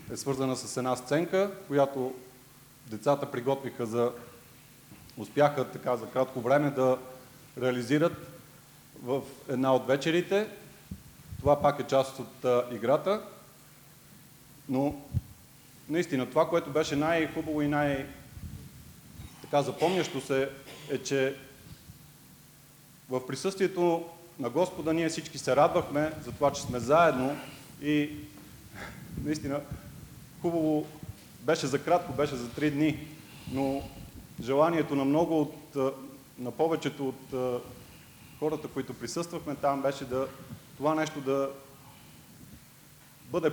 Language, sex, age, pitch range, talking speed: English, male, 40-59, 130-155 Hz, 110 wpm